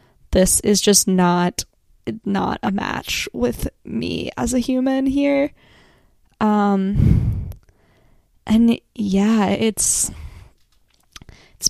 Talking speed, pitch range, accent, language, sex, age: 90 wpm, 185-210 Hz, American, English, female, 10-29